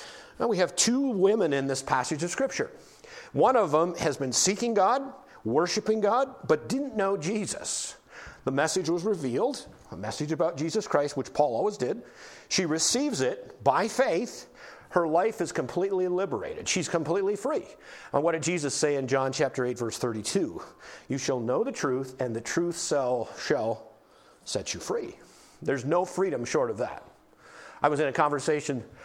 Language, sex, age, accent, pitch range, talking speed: English, male, 50-69, American, 130-215 Hz, 175 wpm